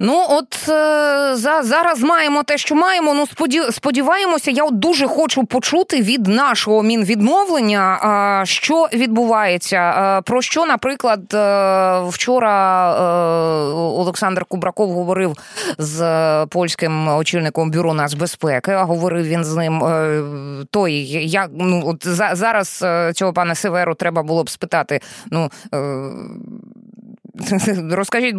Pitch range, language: 165-225 Hz, Ukrainian